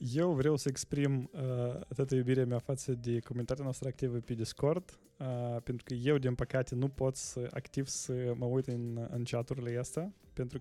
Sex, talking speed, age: male, 190 wpm, 20-39